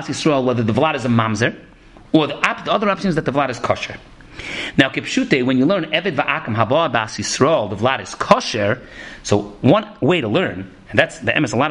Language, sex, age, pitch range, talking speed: English, male, 40-59, 140-190 Hz, 210 wpm